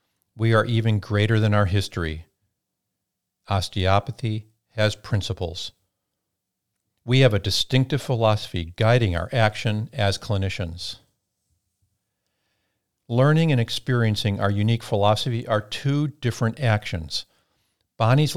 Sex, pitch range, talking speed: male, 100-125 Hz, 100 wpm